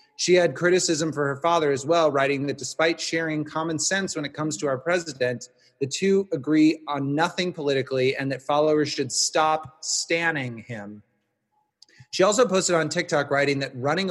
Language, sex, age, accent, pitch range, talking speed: English, male, 30-49, American, 130-165 Hz, 175 wpm